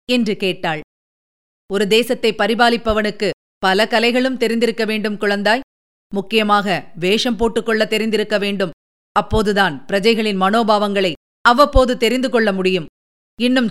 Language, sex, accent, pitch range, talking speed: Tamil, female, native, 210-270 Hz, 95 wpm